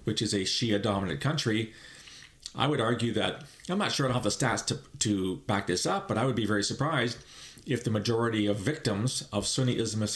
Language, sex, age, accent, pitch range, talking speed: English, male, 40-59, American, 105-125 Hz, 215 wpm